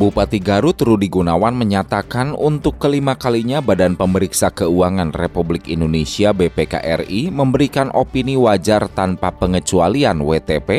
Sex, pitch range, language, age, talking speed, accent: male, 90-135 Hz, Indonesian, 30-49, 110 wpm, native